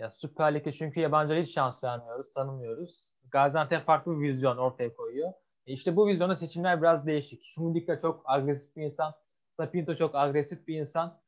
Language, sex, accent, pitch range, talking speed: Turkish, male, native, 130-165 Hz, 170 wpm